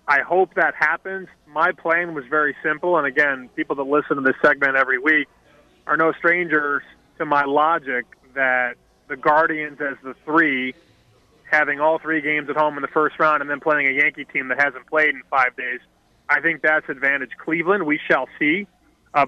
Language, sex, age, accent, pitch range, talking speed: English, male, 30-49, American, 145-165 Hz, 195 wpm